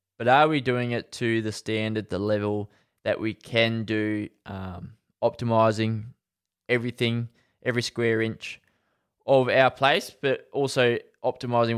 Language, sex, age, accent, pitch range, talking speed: English, male, 20-39, Australian, 110-130 Hz, 130 wpm